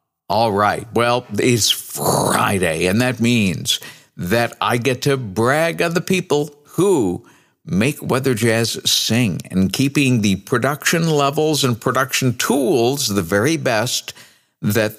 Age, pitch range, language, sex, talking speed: 60-79, 105-150 Hz, English, male, 130 wpm